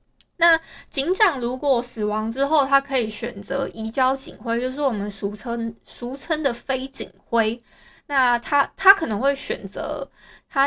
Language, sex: Chinese, female